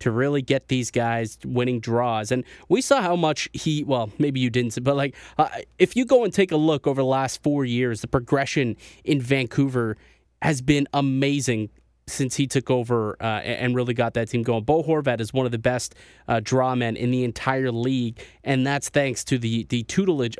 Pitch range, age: 115-145 Hz, 20-39